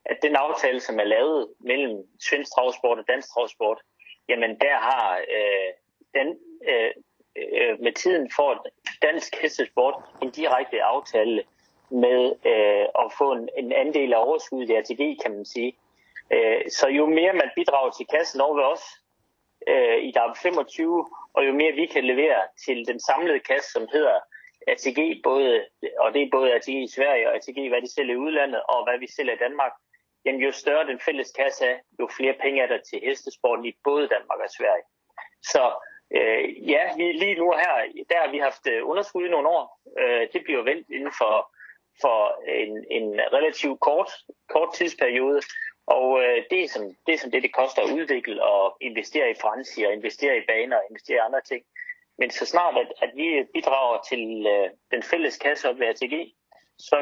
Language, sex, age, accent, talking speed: Danish, male, 30-49, native, 185 wpm